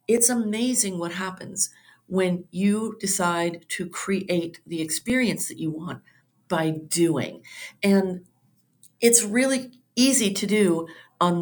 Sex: female